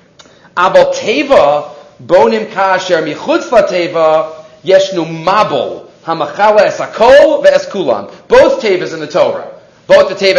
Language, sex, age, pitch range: English, male, 40-59, 180-250 Hz